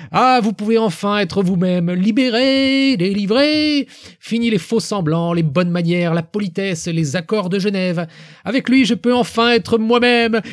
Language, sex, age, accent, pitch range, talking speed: French, male, 30-49, French, 165-235 Hz, 155 wpm